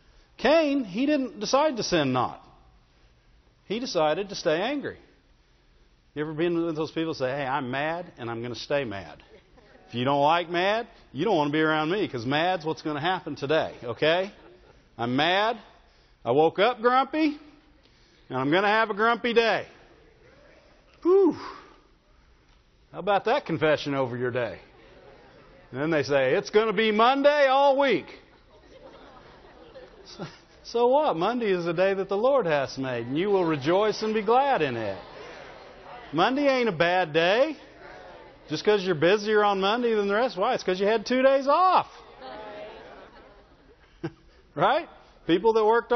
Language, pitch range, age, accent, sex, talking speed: English, 150-240 Hz, 50-69, American, male, 165 wpm